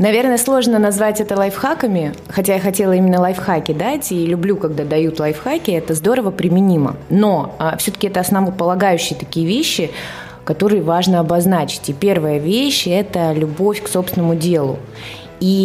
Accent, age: native, 20-39